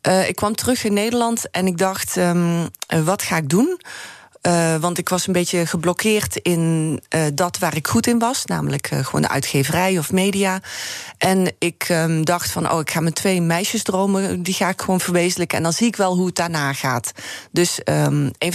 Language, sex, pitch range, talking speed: Dutch, female, 165-205 Hz, 210 wpm